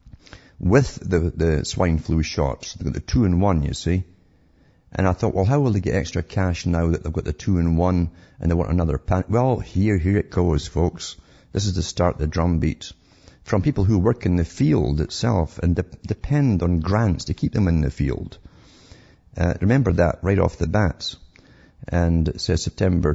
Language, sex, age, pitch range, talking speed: English, male, 50-69, 80-105 Hz, 195 wpm